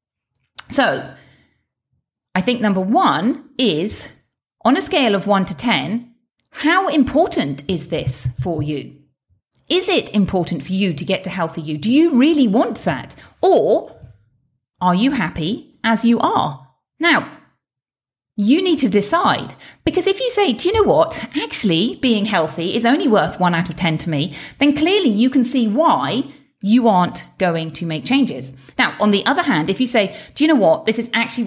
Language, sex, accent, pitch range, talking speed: English, female, British, 165-250 Hz, 175 wpm